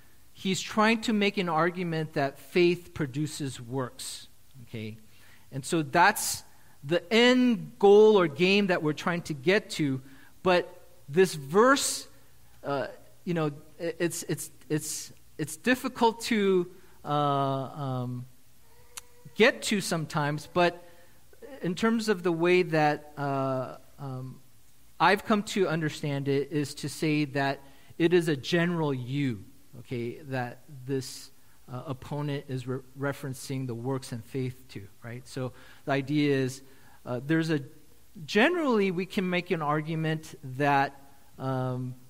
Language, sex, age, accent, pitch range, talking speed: English, male, 40-59, American, 130-175 Hz, 135 wpm